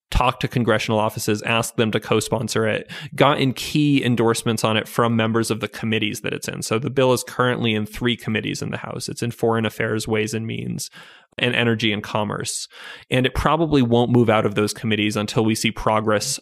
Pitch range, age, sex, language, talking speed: 110-125 Hz, 20-39, male, English, 210 wpm